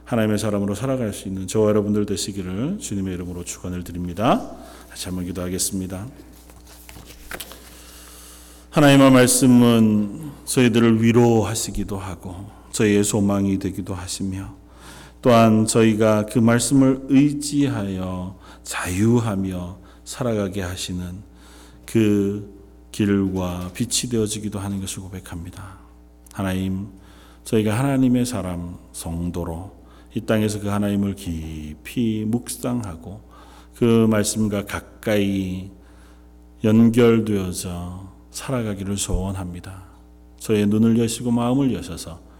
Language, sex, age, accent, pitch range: Korean, male, 40-59, native, 85-110 Hz